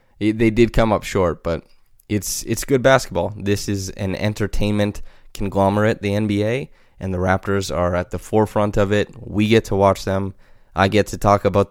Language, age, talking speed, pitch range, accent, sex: English, 20-39, 185 wpm, 95-110 Hz, American, male